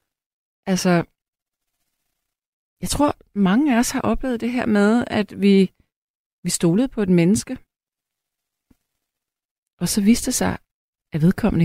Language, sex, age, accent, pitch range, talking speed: Danish, female, 30-49, native, 155-210 Hz, 125 wpm